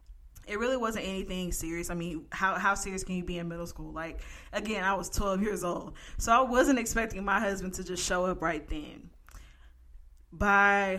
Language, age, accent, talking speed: English, 20-39, American, 195 wpm